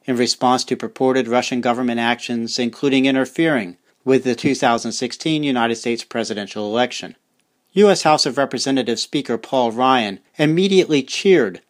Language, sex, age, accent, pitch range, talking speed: English, male, 40-59, American, 120-150 Hz, 130 wpm